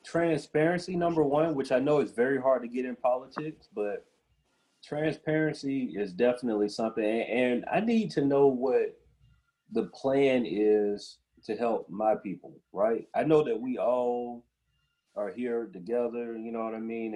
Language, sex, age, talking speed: English, male, 30-49, 155 wpm